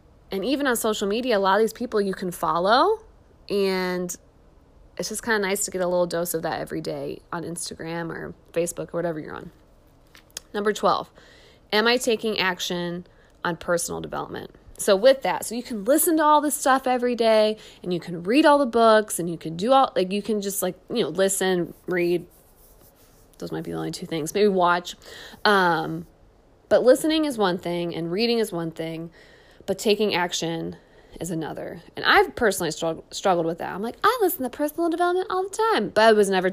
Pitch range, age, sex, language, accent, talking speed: 170-225 Hz, 20-39, female, English, American, 205 wpm